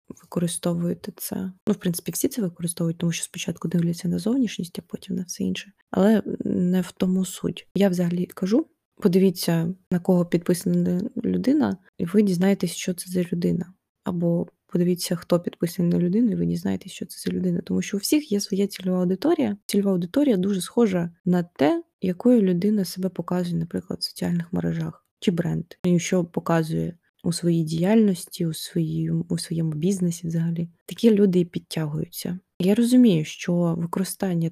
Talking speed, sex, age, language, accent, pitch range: 165 wpm, female, 20-39, Ukrainian, native, 170-200 Hz